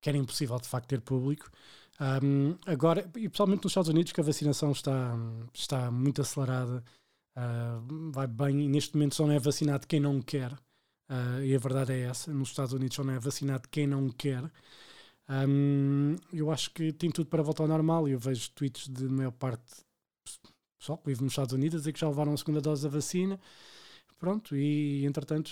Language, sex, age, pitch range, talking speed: Portuguese, male, 20-39, 130-150 Hz, 190 wpm